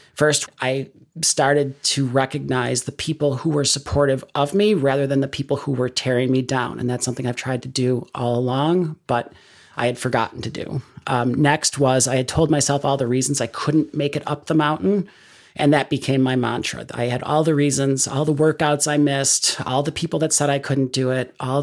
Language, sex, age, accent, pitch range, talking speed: English, male, 40-59, American, 130-150 Hz, 215 wpm